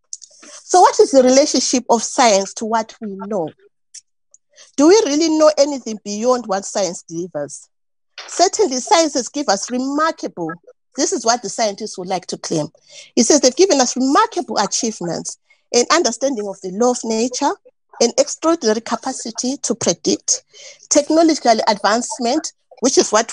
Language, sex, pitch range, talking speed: English, female, 220-310 Hz, 150 wpm